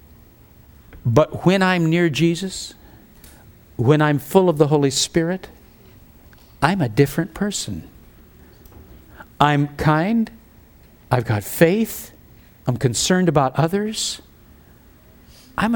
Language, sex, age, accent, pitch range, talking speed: English, male, 60-79, American, 135-205 Hz, 100 wpm